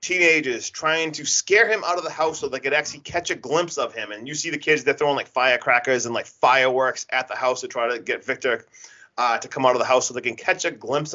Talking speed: 275 wpm